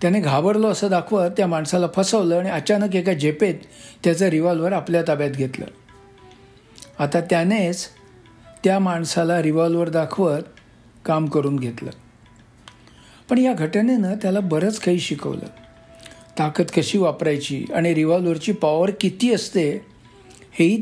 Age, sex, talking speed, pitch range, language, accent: 60-79, male, 120 wpm, 150-195 Hz, Marathi, native